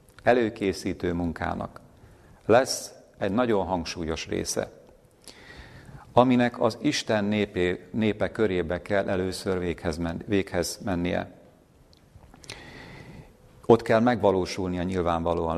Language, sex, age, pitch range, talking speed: Hungarian, male, 50-69, 90-105 Hz, 80 wpm